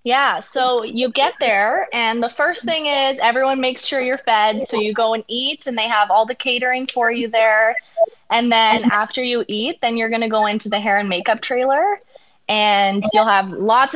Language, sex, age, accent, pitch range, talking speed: English, female, 20-39, American, 215-265 Hz, 210 wpm